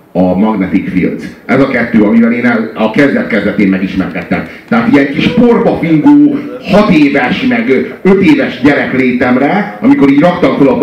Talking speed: 145 wpm